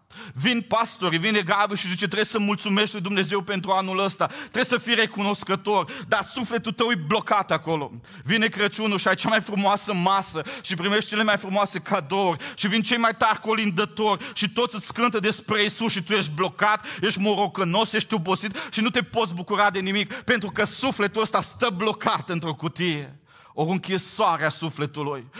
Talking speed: 180 wpm